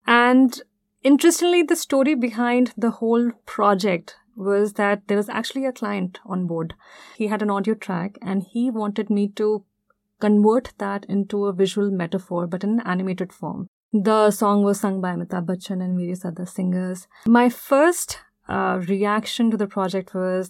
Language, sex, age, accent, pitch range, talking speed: English, female, 30-49, Indian, 185-225 Hz, 165 wpm